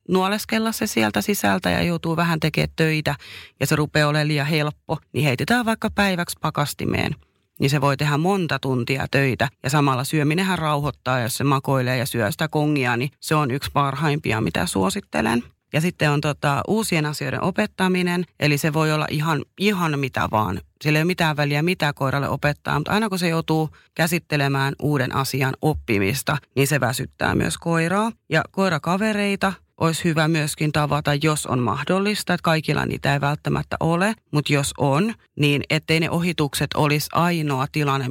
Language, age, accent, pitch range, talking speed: Finnish, 30-49, native, 135-165 Hz, 165 wpm